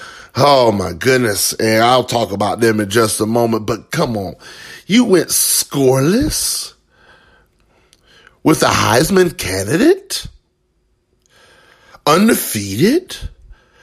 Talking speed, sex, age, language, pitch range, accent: 100 wpm, male, 40-59, English, 110-175 Hz, American